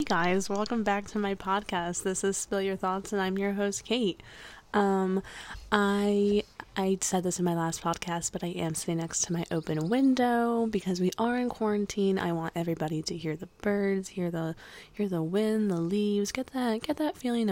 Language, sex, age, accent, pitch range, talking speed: English, female, 20-39, American, 175-225 Hz, 200 wpm